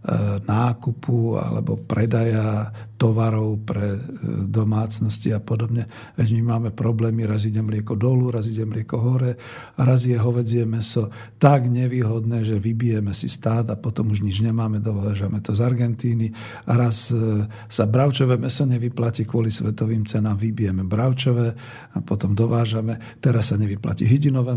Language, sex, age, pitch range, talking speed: Slovak, male, 50-69, 110-125 Hz, 140 wpm